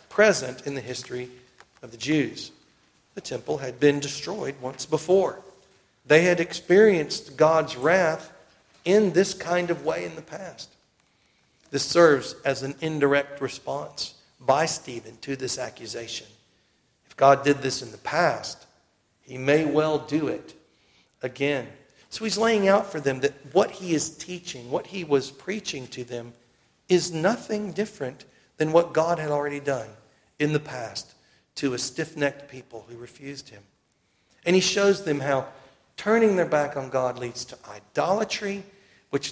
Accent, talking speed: American, 155 wpm